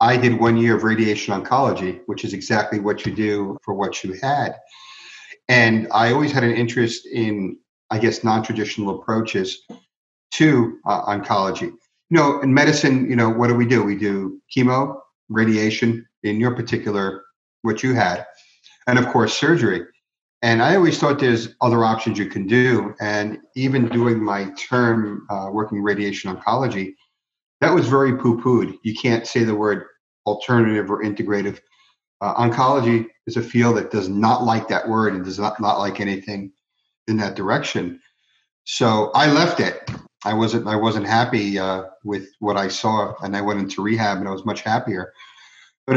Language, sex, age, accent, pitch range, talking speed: English, male, 50-69, American, 100-120 Hz, 170 wpm